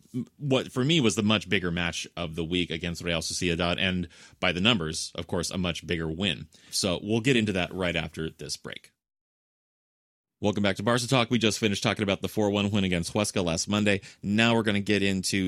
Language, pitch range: English, 90-110 Hz